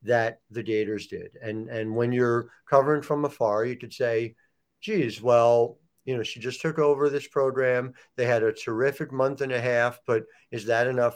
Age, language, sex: 50-69, English, male